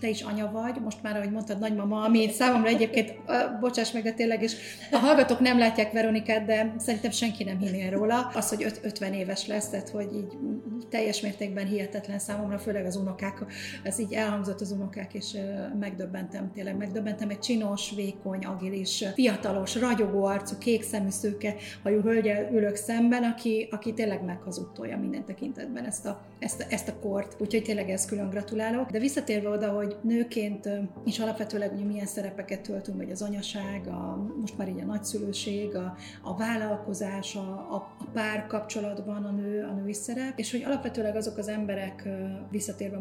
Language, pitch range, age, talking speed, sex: Hungarian, 200-225 Hz, 30-49, 175 wpm, female